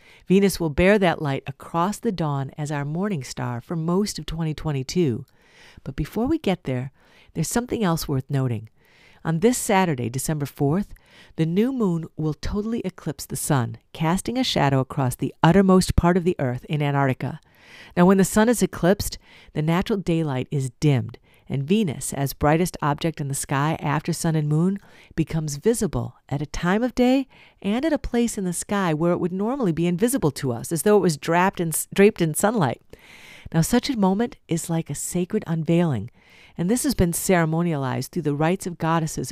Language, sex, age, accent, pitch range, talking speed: English, female, 50-69, American, 145-195 Hz, 190 wpm